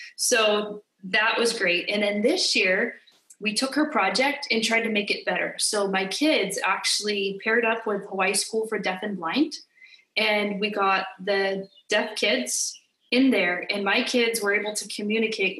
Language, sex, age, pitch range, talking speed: English, female, 20-39, 195-230 Hz, 175 wpm